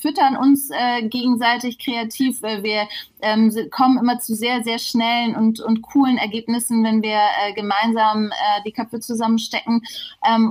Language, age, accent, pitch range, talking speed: German, 30-49, German, 215-245 Hz, 155 wpm